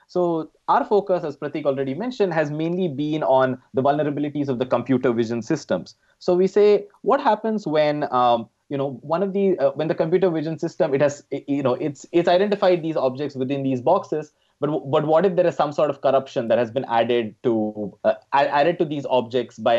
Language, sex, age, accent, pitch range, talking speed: English, male, 20-39, Indian, 135-180 Hz, 210 wpm